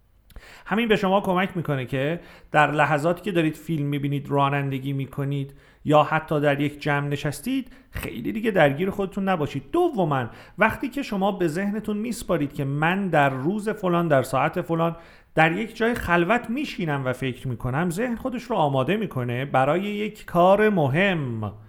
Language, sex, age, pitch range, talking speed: Persian, male, 40-59, 135-195 Hz, 165 wpm